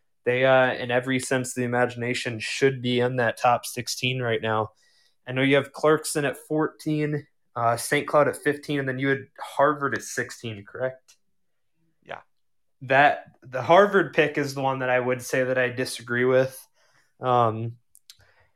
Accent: American